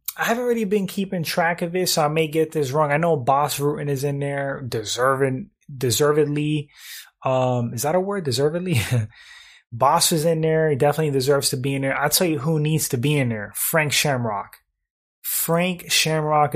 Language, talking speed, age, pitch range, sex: English, 190 wpm, 20-39, 125-165 Hz, male